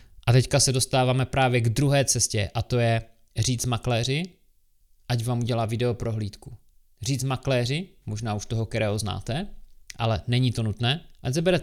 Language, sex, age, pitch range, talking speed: Czech, male, 20-39, 115-135 Hz, 160 wpm